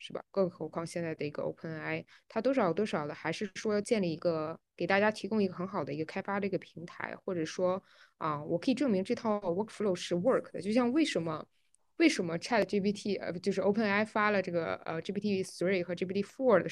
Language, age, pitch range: Chinese, 20-39, 170-210 Hz